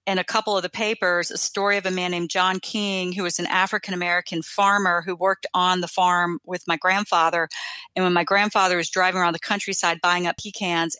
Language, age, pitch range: English, 40-59, 175-210 Hz